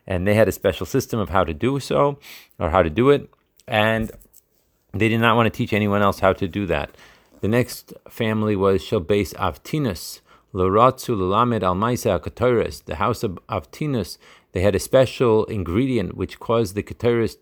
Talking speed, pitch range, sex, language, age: 180 wpm, 95-120 Hz, male, Hebrew, 40-59